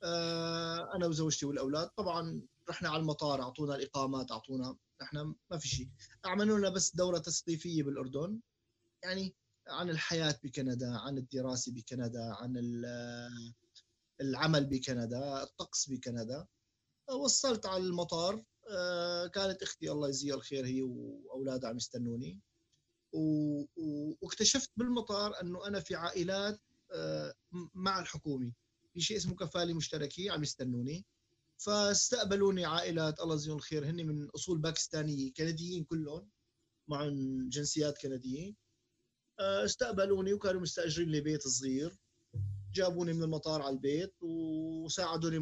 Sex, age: male, 30-49